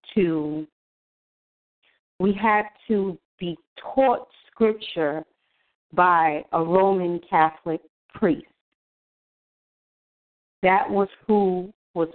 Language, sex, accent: English, female, American